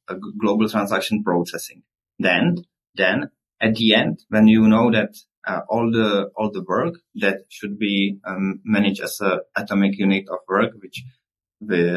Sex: male